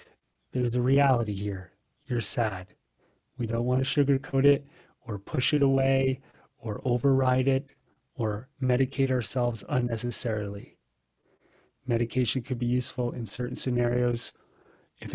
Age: 30-49